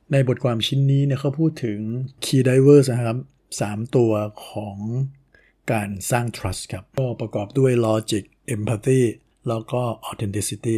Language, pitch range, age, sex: Thai, 105-125 Hz, 60-79, male